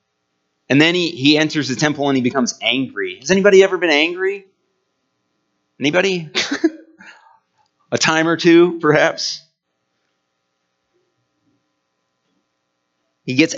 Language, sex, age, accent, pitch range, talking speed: English, male, 30-49, American, 105-155 Hz, 105 wpm